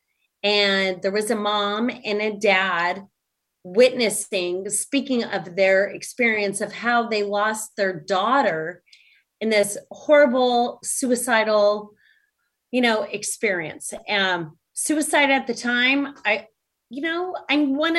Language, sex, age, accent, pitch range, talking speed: English, female, 30-49, American, 200-270 Hz, 120 wpm